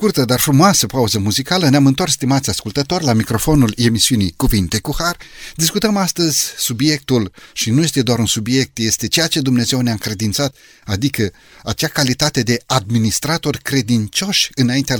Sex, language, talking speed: male, Romanian, 145 wpm